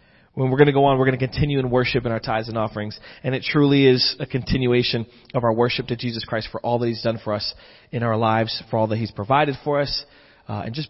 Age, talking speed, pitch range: 30-49, 260 wpm, 110-130 Hz